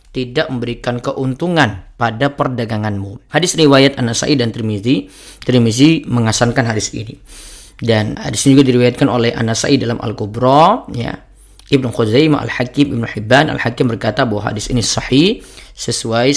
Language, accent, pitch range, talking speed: Indonesian, native, 115-140 Hz, 130 wpm